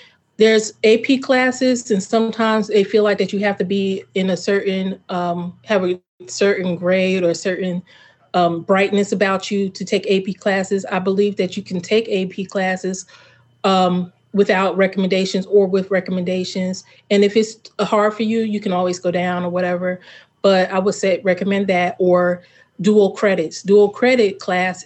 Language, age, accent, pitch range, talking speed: English, 30-49, American, 180-210 Hz, 170 wpm